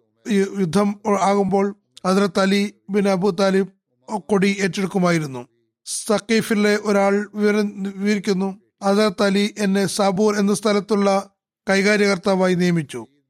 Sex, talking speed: male, 90 wpm